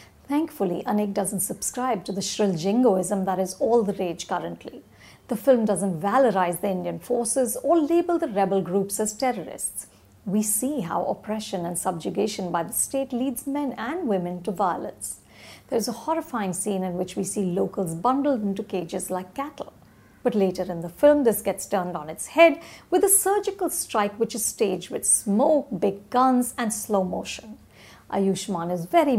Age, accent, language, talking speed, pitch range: 50-69, Indian, English, 175 wpm, 190-250 Hz